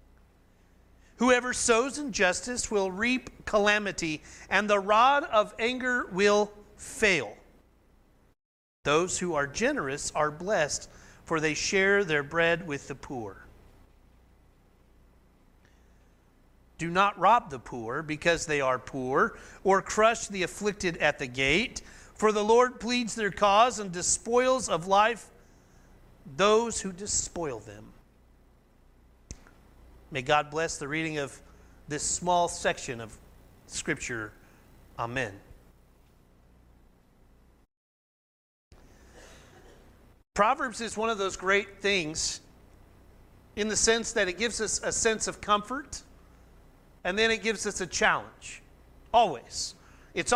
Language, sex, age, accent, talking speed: English, male, 40-59, American, 115 wpm